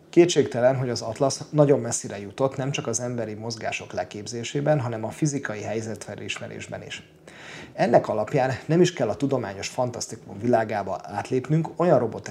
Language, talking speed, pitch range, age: Hungarian, 140 wpm, 110-140 Hz, 30-49